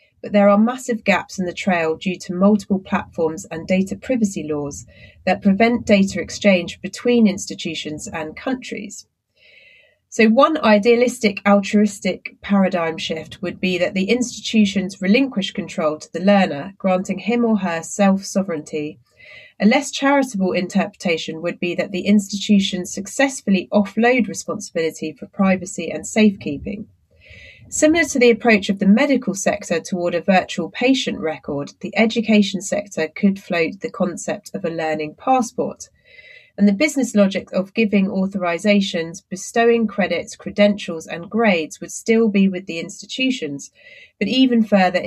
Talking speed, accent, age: 140 wpm, British, 30-49